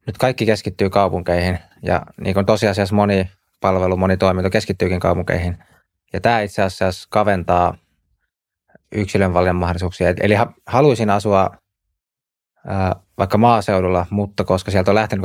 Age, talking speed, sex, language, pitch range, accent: 20-39, 130 wpm, male, Finnish, 90-105 Hz, native